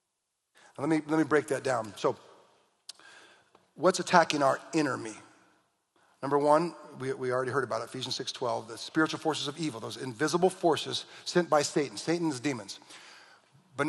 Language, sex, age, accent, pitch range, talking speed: English, male, 40-59, American, 150-185 Hz, 160 wpm